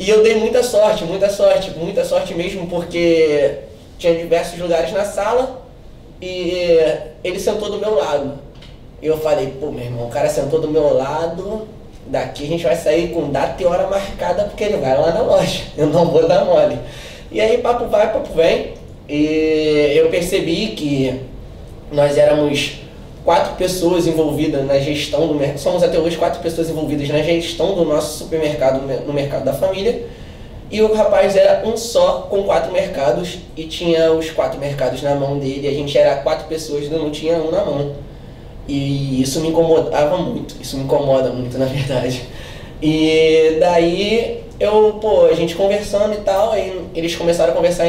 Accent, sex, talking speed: Brazilian, male, 180 wpm